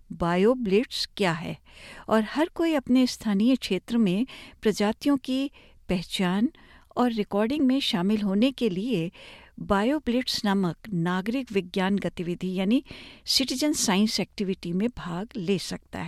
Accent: native